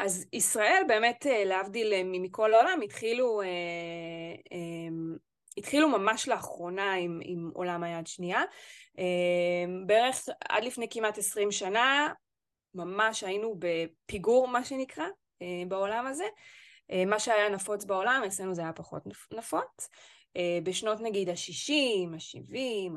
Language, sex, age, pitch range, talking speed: Hebrew, female, 20-39, 185-245 Hz, 105 wpm